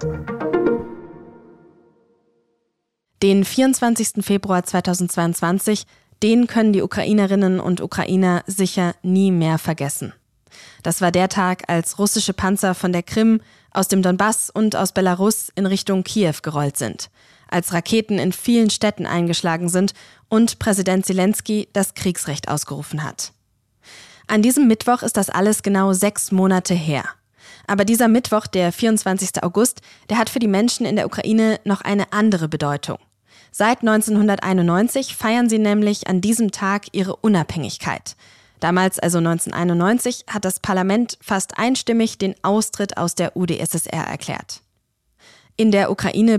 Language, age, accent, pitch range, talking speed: German, 20-39, German, 170-210 Hz, 135 wpm